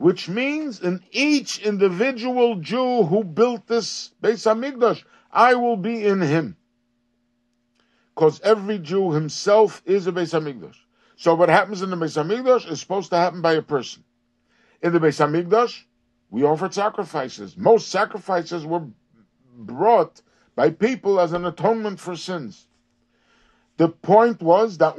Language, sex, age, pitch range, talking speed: English, male, 60-79, 150-225 Hz, 145 wpm